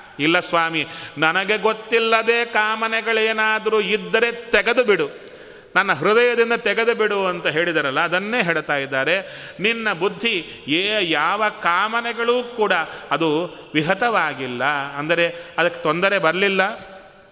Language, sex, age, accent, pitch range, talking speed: Kannada, male, 30-49, native, 155-225 Hz, 100 wpm